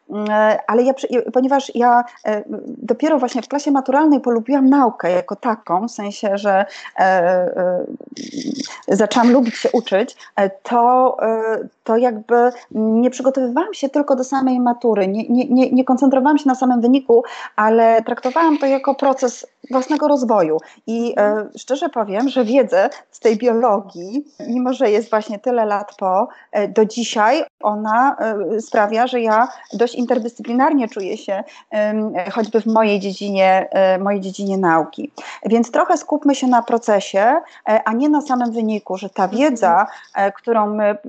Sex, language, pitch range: female, Polish, 215-270 Hz